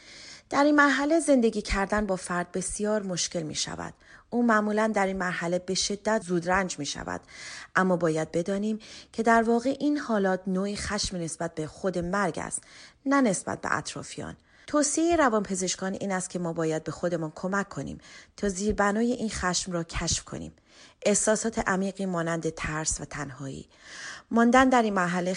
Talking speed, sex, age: 165 wpm, female, 30-49